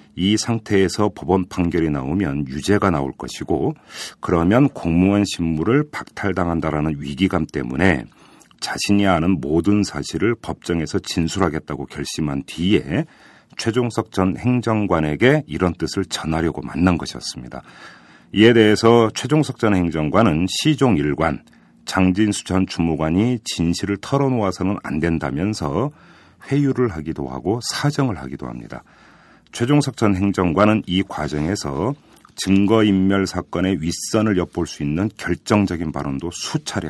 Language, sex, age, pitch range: Korean, male, 40-59, 80-105 Hz